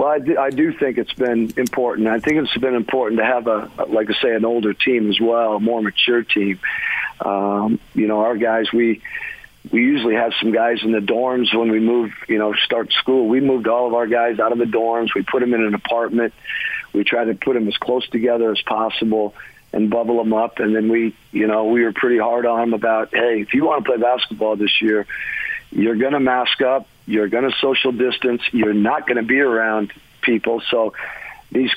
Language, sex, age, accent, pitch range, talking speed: English, male, 50-69, American, 110-125 Hz, 225 wpm